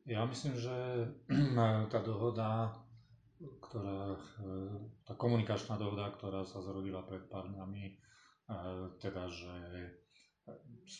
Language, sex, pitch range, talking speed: Slovak, male, 95-115 Hz, 105 wpm